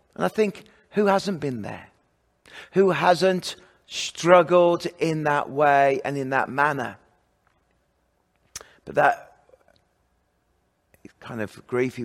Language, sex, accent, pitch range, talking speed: English, male, British, 105-160 Hz, 115 wpm